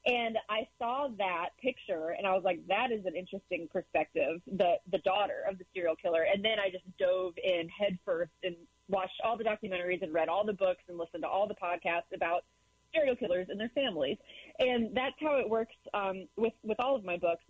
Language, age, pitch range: English, 30-49, 180-210 Hz